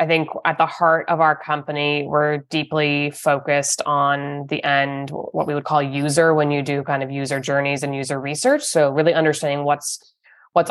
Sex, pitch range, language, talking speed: female, 145-160 Hz, English, 190 wpm